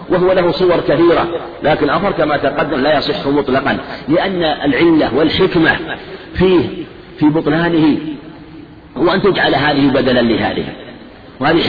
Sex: male